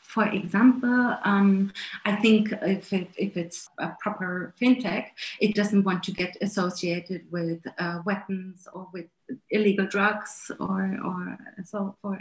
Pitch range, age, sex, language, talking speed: 180-215 Hz, 30-49, female, English, 145 wpm